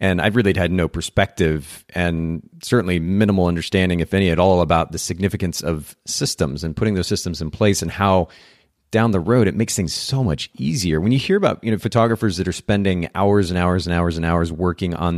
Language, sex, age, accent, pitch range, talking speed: English, male, 40-59, American, 90-110 Hz, 210 wpm